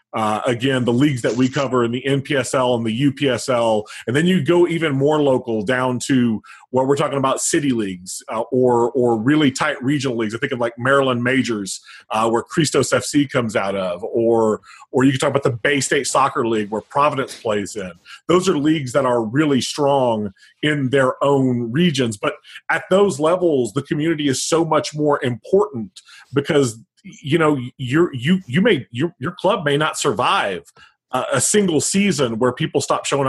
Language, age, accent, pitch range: English, 40-59, American, 120-155 Hz